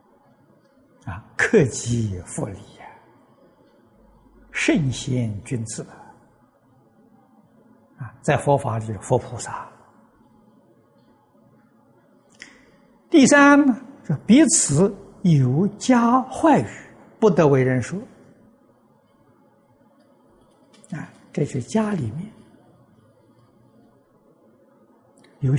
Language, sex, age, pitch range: Chinese, male, 60-79, 120-200 Hz